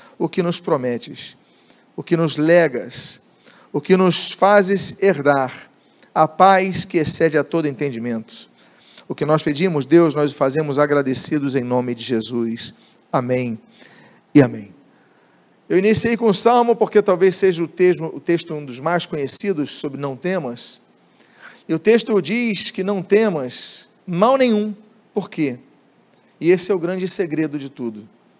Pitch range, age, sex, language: 145-195 Hz, 40-59, male, Portuguese